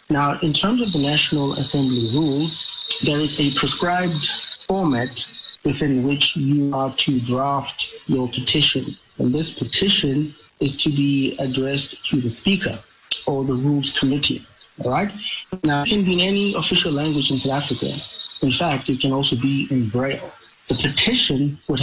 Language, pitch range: English, 130-150 Hz